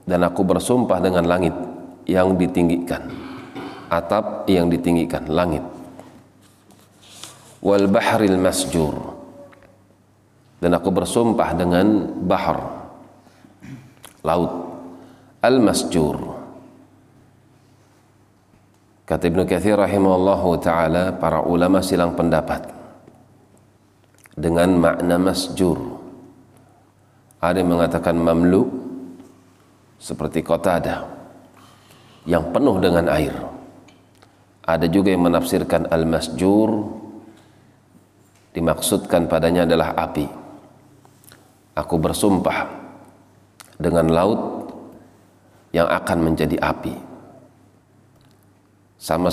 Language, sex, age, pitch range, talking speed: Indonesian, male, 40-59, 85-105 Hz, 75 wpm